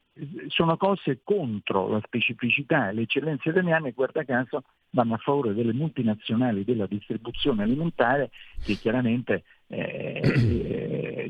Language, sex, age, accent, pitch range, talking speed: Italian, male, 50-69, native, 105-140 Hz, 115 wpm